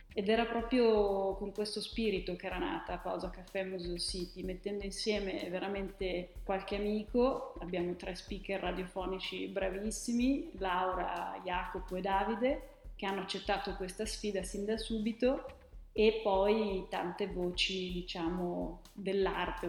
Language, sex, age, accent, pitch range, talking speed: Italian, female, 30-49, native, 175-195 Hz, 125 wpm